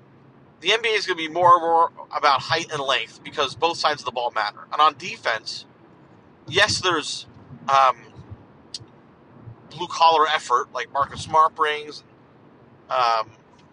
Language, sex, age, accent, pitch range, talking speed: English, male, 40-59, American, 130-165 Hz, 145 wpm